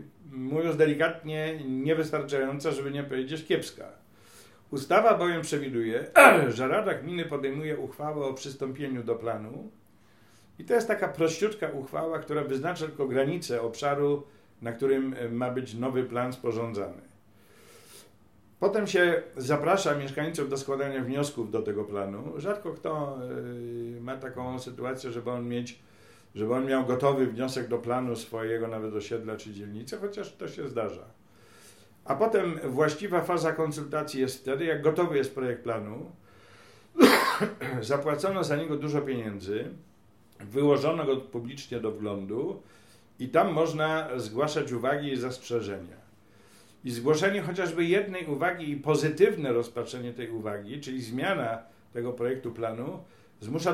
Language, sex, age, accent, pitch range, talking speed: Polish, male, 50-69, native, 115-155 Hz, 130 wpm